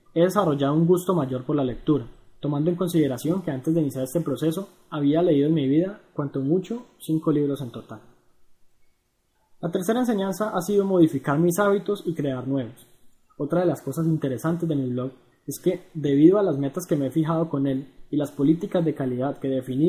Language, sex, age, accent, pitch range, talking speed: Spanish, male, 20-39, Colombian, 135-175 Hz, 200 wpm